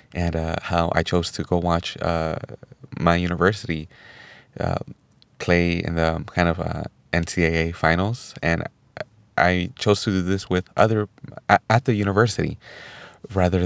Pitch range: 85-100 Hz